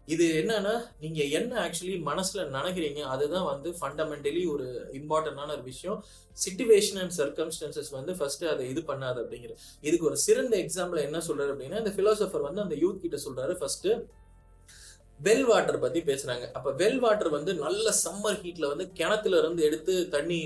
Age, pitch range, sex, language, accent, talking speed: 30-49, 150-210 Hz, male, Tamil, native, 110 wpm